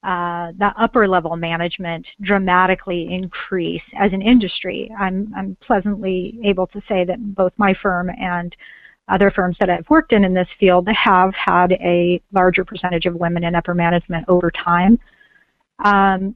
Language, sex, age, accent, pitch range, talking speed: English, female, 40-59, American, 180-230 Hz, 160 wpm